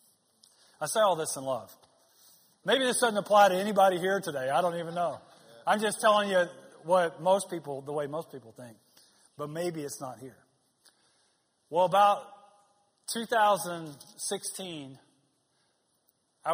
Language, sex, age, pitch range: English, male, 40-59, 145-190 Hz